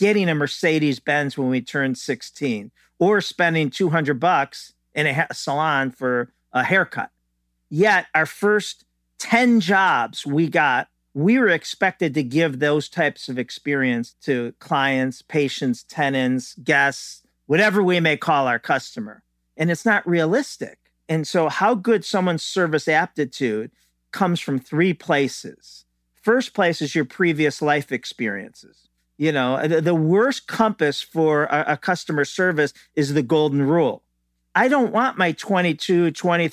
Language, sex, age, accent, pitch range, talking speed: English, male, 50-69, American, 135-175 Hz, 140 wpm